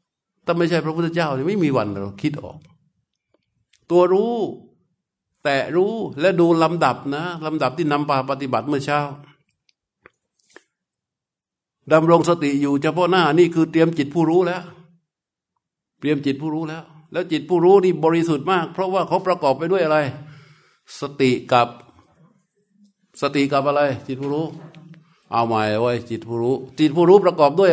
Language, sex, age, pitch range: Thai, male, 60-79, 140-175 Hz